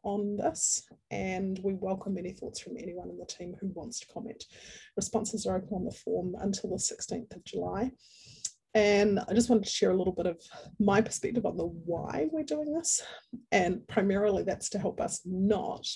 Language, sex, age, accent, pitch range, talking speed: English, female, 30-49, Australian, 185-240 Hz, 195 wpm